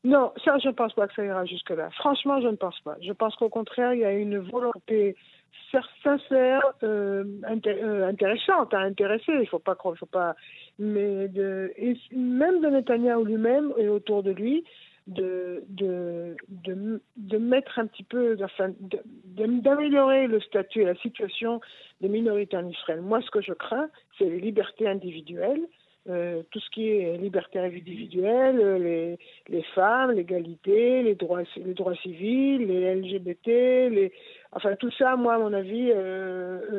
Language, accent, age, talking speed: French, French, 60-79, 170 wpm